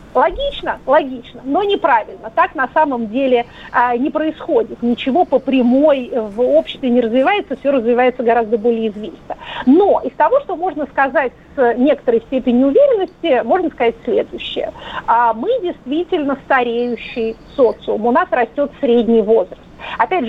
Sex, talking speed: female, 135 wpm